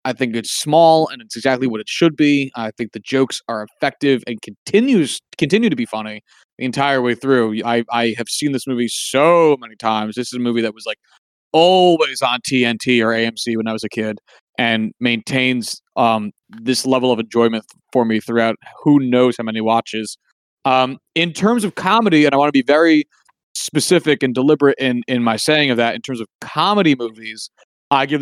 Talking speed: 200 wpm